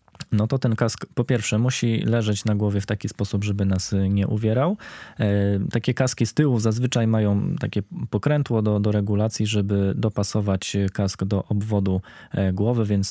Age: 20-39